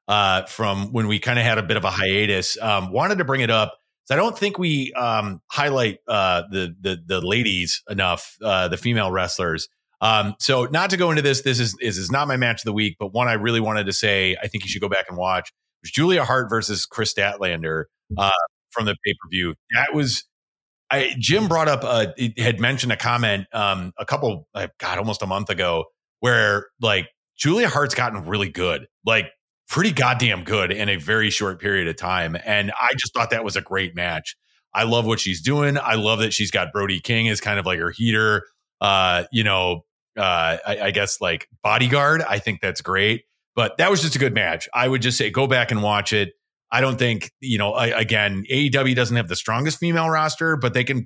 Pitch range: 95-125 Hz